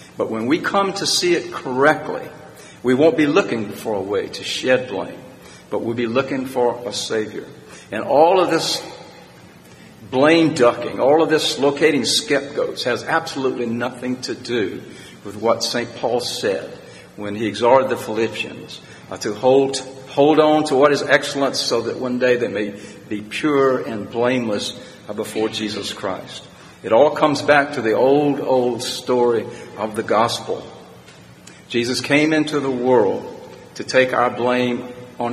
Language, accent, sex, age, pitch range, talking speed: English, American, male, 60-79, 115-140 Hz, 160 wpm